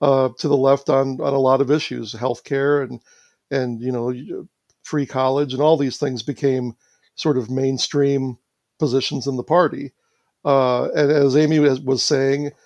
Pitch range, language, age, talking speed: 130-145 Hz, English, 60-79, 160 wpm